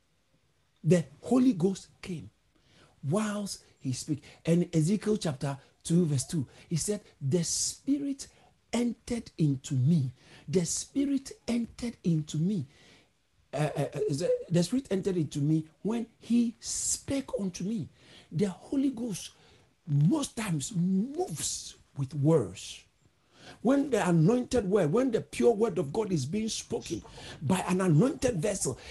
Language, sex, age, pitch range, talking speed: English, male, 60-79, 150-230 Hz, 135 wpm